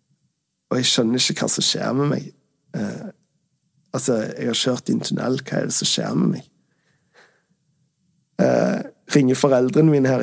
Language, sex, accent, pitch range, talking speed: English, male, Swedish, 130-155 Hz, 195 wpm